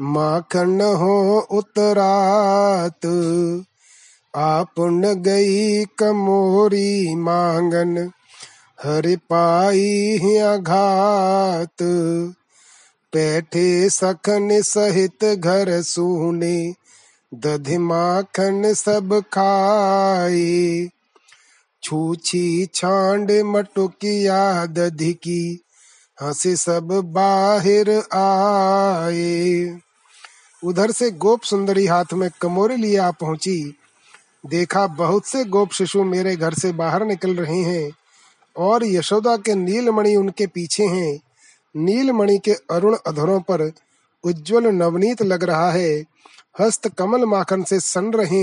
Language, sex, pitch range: Hindi, male, 175-205 Hz